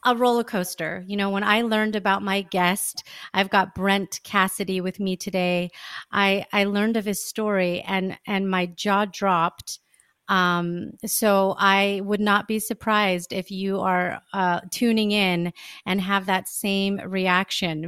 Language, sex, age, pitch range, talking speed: English, female, 30-49, 185-215 Hz, 160 wpm